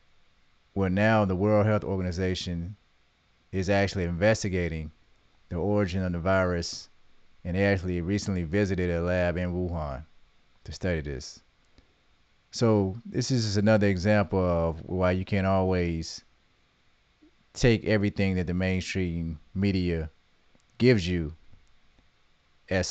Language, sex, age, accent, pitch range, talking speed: English, male, 30-49, American, 85-100 Hz, 120 wpm